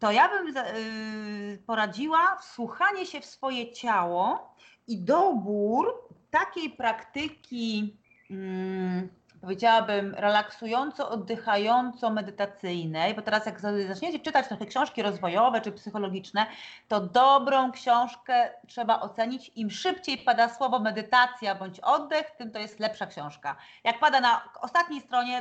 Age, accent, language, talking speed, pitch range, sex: 30-49, native, Polish, 115 wpm, 205-250 Hz, female